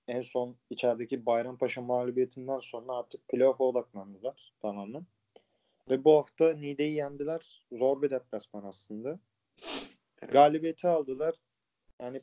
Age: 40-59